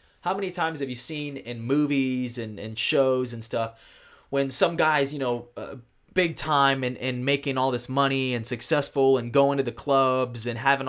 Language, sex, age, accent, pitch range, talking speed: English, male, 20-39, American, 120-155 Hz, 200 wpm